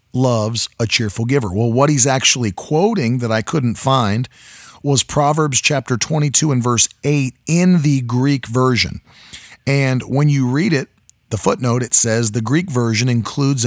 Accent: American